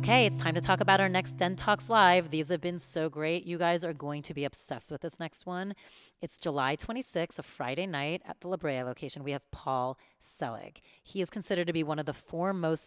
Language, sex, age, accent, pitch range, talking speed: English, female, 30-49, American, 135-170 Hz, 240 wpm